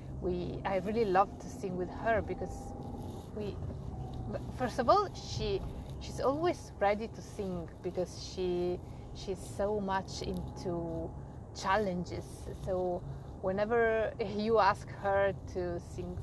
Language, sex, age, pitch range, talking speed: English, female, 30-49, 135-205 Hz, 120 wpm